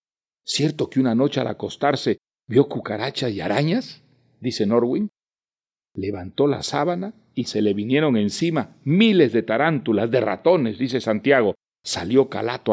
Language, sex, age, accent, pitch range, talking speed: Spanish, male, 50-69, Mexican, 105-130 Hz, 135 wpm